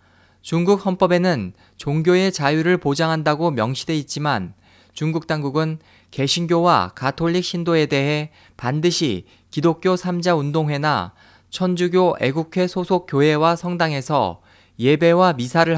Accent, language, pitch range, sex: native, Korean, 120-170 Hz, male